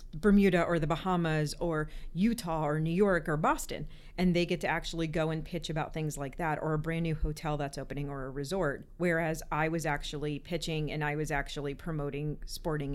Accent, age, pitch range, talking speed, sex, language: American, 40-59, 160-190 Hz, 205 wpm, female, English